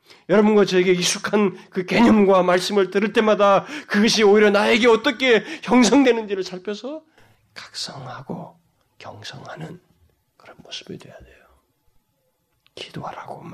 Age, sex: 40-59, male